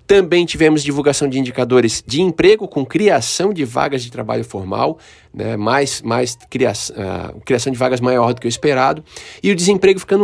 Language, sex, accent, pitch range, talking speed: Portuguese, male, Brazilian, 120-180 Hz, 175 wpm